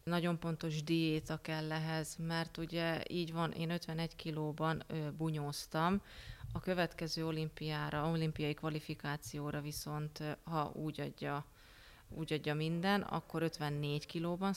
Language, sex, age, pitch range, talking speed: Hungarian, female, 30-49, 155-175 Hz, 115 wpm